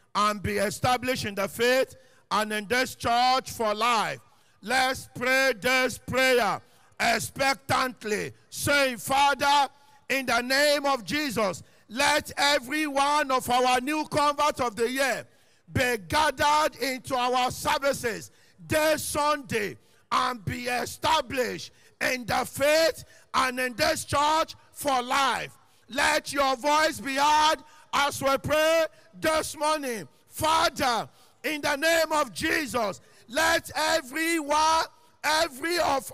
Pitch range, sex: 255-315 Hz, male